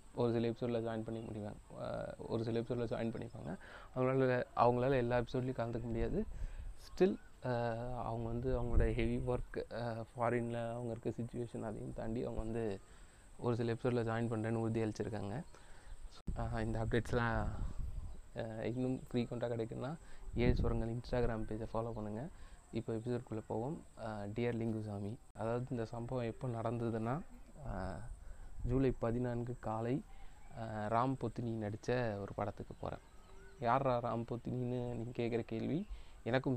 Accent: native